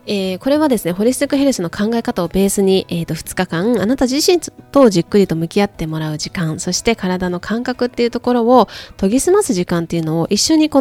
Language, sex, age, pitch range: Japanese, female, 20-39, 170-245 Hz